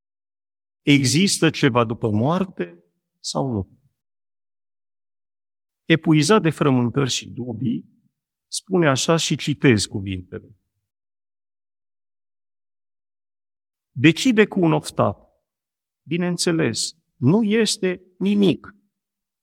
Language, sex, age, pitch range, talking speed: Romanian, male, 50-69, 110-155 Hz, 75 wpm